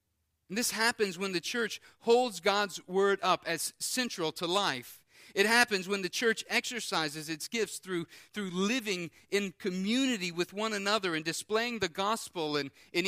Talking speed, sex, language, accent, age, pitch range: 165 wpm, male, English, American, 40-59, 130-195 Hz